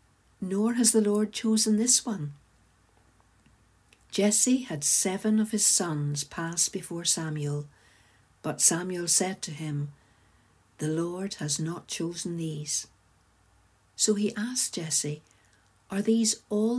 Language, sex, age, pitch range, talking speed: English, female, 60-79, 115-175 Hz, 120 wpm